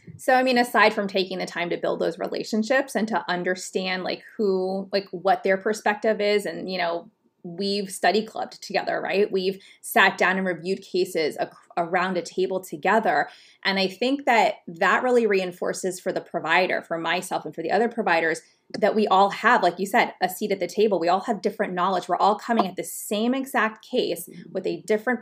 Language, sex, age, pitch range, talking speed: English, female, 20-39, 180-220 Hz, 200 wpm